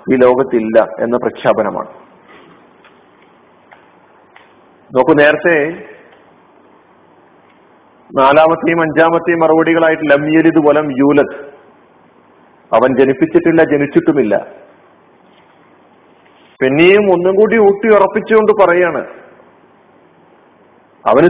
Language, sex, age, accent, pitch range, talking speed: Malayalam, male, 50-69, native, 145-185 Hz, 60 wpm